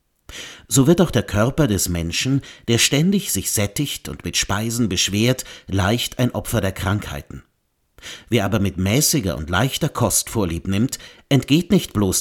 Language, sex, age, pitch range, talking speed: German, male, 50-69, 95-130 Hz, 155 wpm